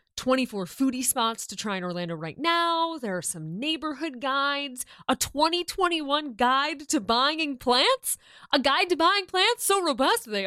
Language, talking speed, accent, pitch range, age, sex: English, 160 wpm, American, 200-325 Hz, 20-39, female